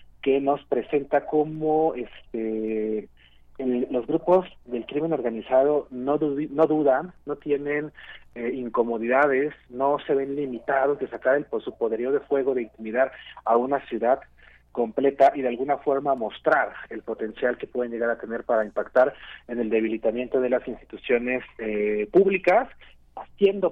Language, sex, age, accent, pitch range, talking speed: Spanish, male, 40-59, Mexican, 120-160 Hz, 140 wpm